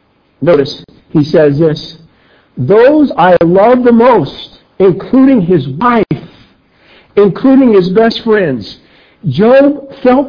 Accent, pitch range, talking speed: American, 155-220 Hz, 105 wpm